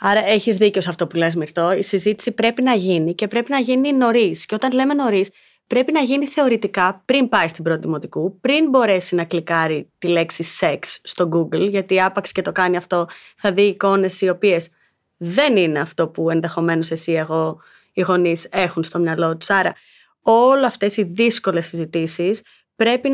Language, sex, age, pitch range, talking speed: Greek, female, 30-49, 185-255 Hz, 180 wpm